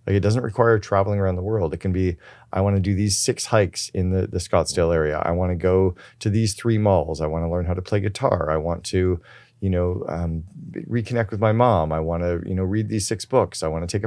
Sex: male